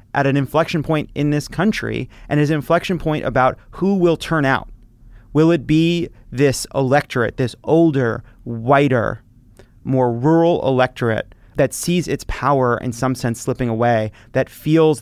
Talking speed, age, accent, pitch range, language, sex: 155 wpm, 30-49, American, 115-145 Hz, English, male